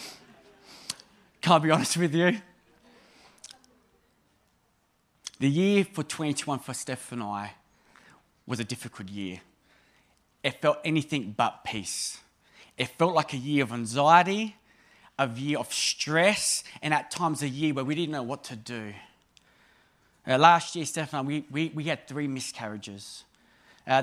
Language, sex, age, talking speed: English, male, 20-39, 145 wpm